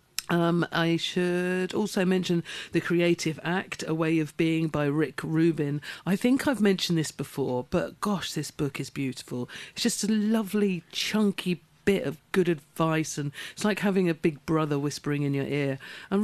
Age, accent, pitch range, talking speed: 50-69, British, 150-185 Hz, 175 wpm